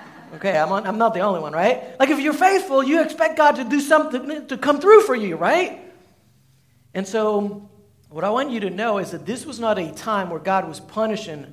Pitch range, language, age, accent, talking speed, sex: 190-265 Hz, English, 50-69, American, 230 wpm, male